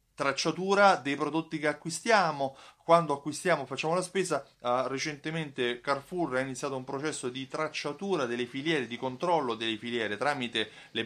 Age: 30-49